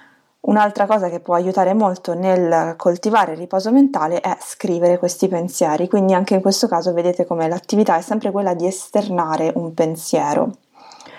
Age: 20-39